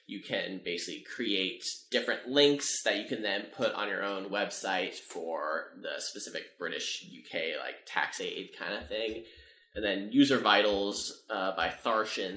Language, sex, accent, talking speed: English, male, American, 160 wpm